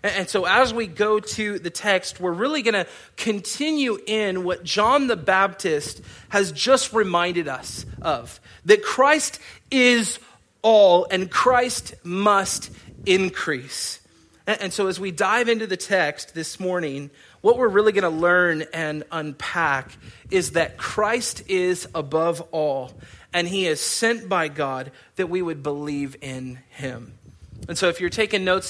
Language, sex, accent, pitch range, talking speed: English, male, American, 150-195 Hz, 155 wpm